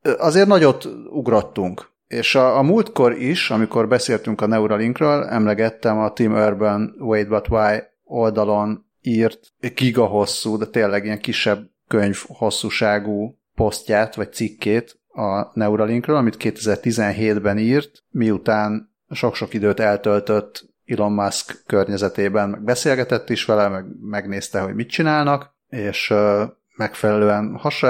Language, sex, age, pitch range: Hungarian, male, 30-49, 105-125 Hz